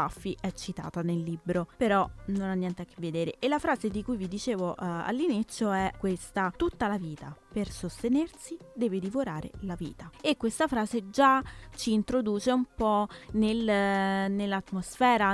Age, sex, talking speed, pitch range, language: 20-39, female, 160 wpm, 180-220 Hz, Italian